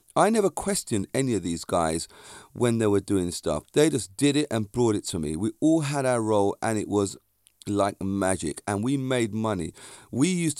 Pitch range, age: 100-130 Hz, 40-59